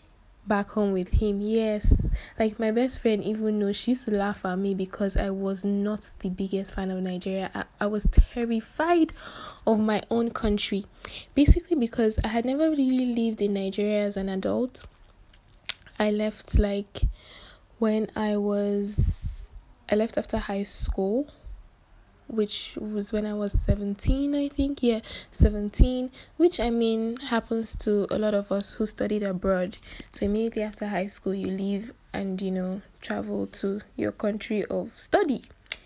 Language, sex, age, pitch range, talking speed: English, female, 10-29, 200-230 Hz, 160 wpm